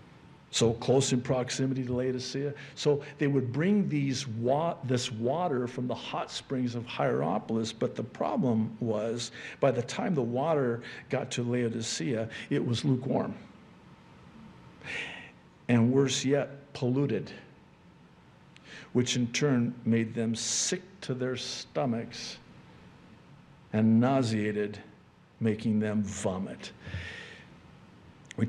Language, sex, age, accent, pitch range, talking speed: English, male, 50-69, American, 115-130 Hz, 110 wpm